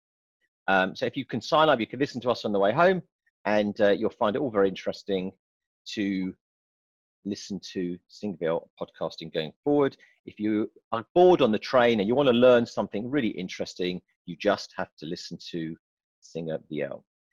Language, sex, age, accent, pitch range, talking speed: English, male, 40-59, British, 105-165 Hz, 185 wpm